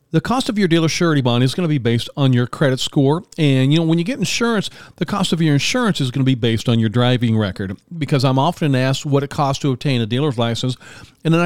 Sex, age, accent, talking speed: male, 40-59, American, 265 wpm